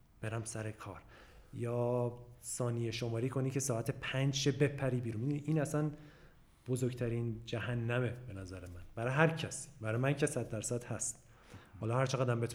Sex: male